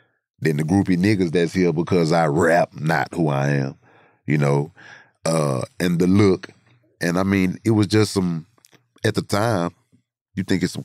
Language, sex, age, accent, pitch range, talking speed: English, male, 30-49, American, 75-95 Hz, 185 wpm